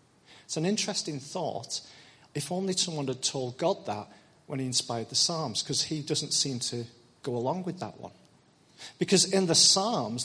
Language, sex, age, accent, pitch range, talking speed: English, male, 40-59, British, 120-170 Hz, 175 wpm